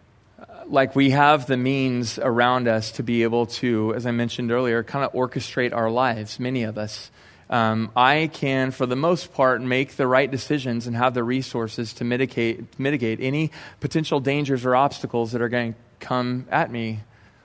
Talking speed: 180 wpm